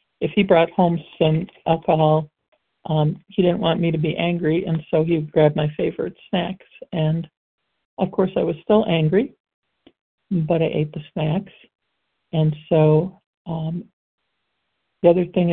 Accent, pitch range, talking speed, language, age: American, 160-190 Hz, 150 wpm, English, 50-69